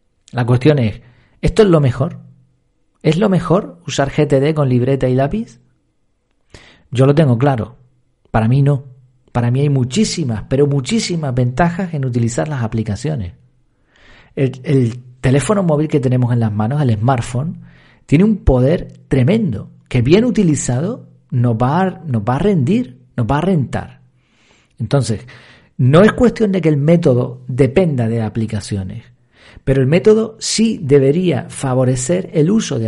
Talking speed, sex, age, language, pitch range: 150 wpm, male, 40-59, Spanish, 120-150 Hz